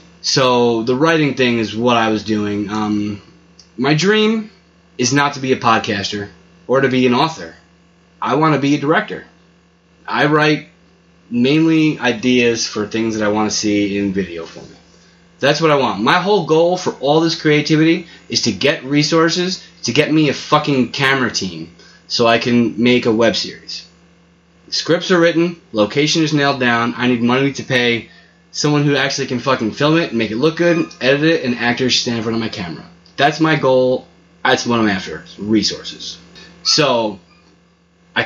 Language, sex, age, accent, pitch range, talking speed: English, male, 20-39, American, 105-145 Hz, 185 wpm